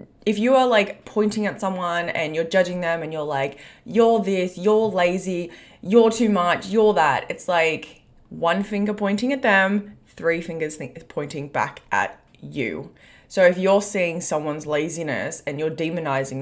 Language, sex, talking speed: English, female, 165 wpm